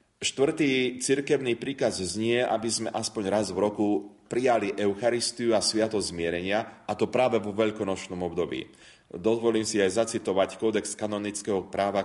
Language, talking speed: Slovak, 140 wpm